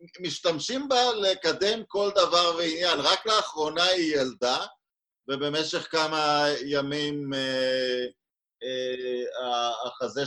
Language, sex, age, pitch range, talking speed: Hebrew, male, 50-69, 130-160 Hz, 95 wpm